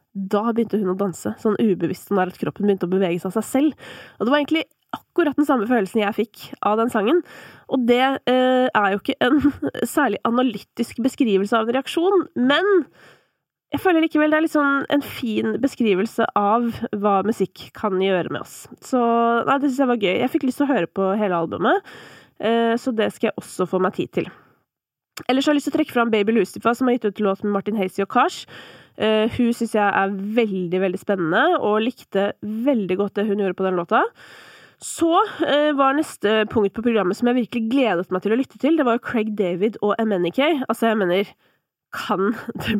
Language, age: English, 20-39